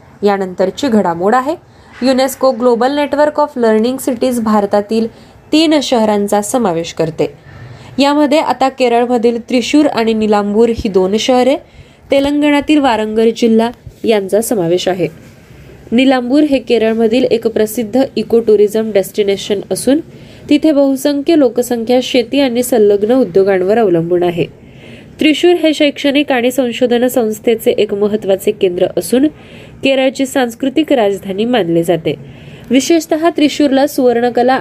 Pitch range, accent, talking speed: 200-265 Hz, native, 80 wpm